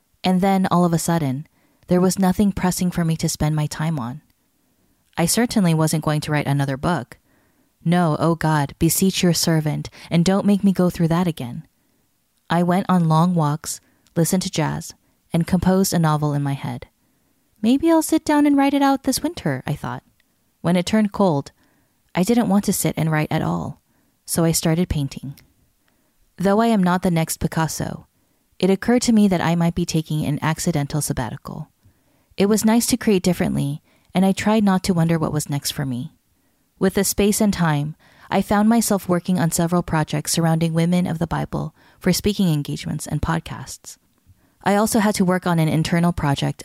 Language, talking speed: English, 195 wpm